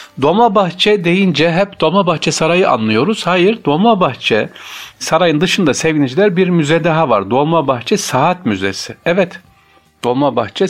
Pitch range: 110-160 Hz